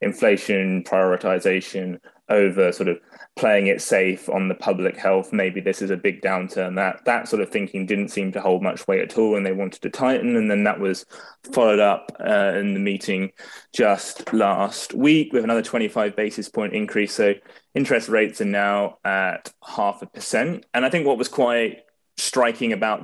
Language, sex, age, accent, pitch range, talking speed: English, male, 20-39, British, 95-110 Hz, 190 wpm